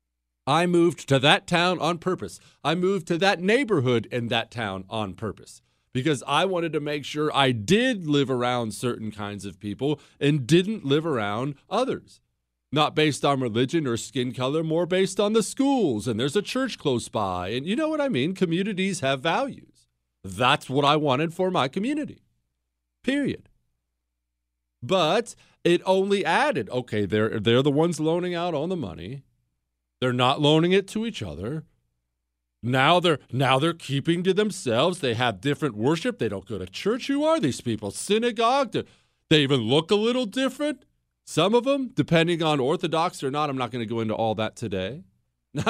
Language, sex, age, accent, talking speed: English, male, 40-59, American, 180 wpm